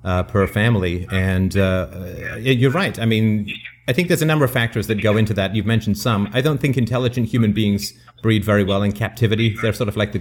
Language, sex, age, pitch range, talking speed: English, male, 40-59, 105-130 Hz, 230 wpm